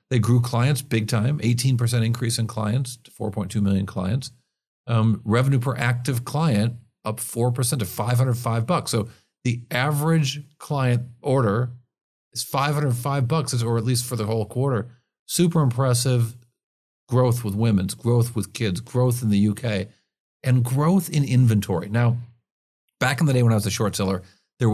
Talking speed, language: 160 wpm, English